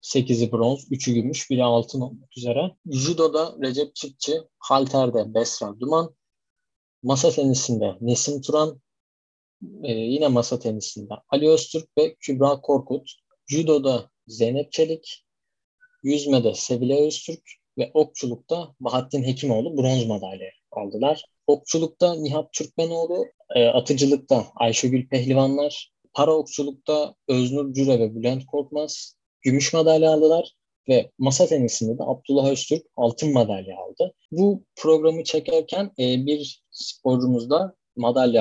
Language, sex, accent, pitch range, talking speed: Turkish, male, native, 120-150 Hz, 110 wpm